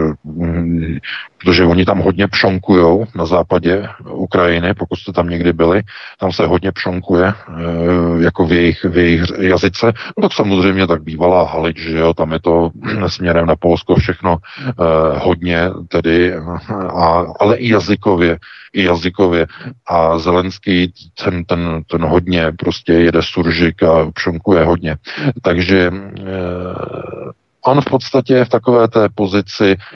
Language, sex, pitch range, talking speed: Czech, male, 85-100 Hz, 140 wpm